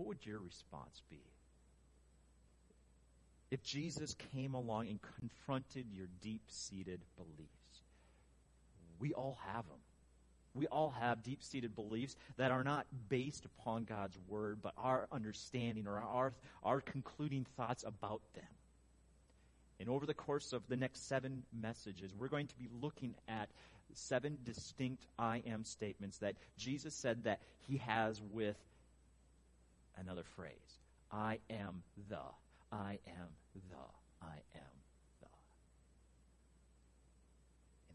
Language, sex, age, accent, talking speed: English, male, 40-59, American, 125 wpm